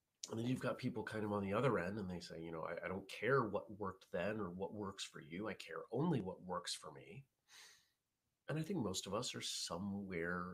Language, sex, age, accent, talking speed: English, male, 30-49, American, 245 wpm